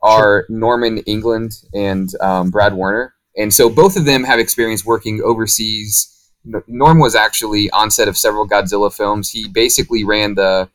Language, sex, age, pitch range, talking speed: English, male, 30-49, 95-115 Hz, 165 wpm